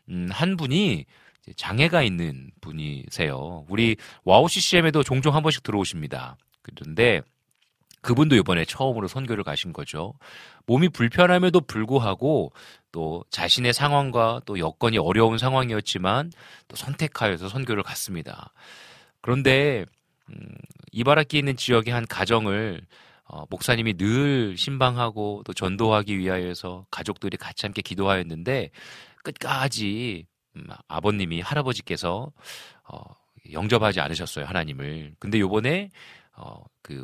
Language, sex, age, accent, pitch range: Korean, male, 40-59, native, 95-135 Hz